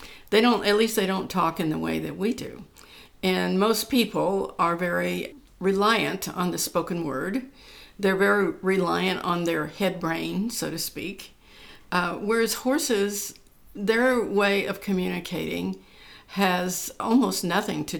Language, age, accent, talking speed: English, 60-79, American, 145 wpm